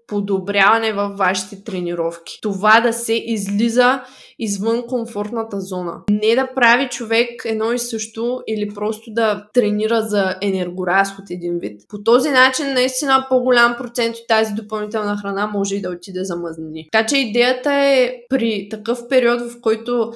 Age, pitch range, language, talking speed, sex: 20-39, 200-240 Hz, Bulgarian, 150 wpm, female